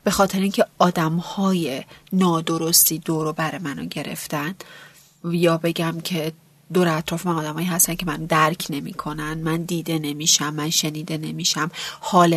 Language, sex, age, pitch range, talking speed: Persian, female, 30-49, 160-215 Hz, 130 wpm